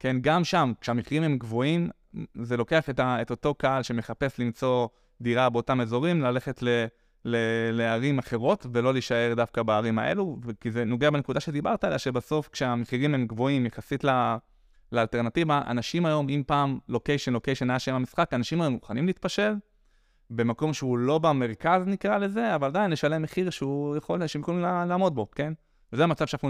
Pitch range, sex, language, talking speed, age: 120-145 Hz, male, Hebrew, 170 wpm, 20-39